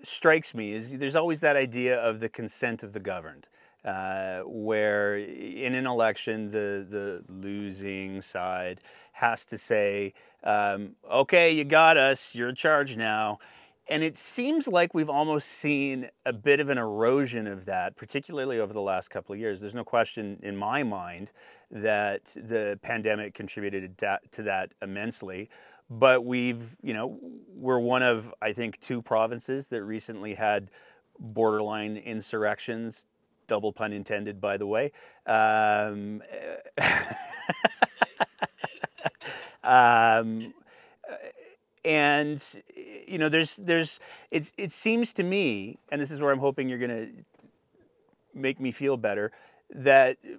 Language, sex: English, male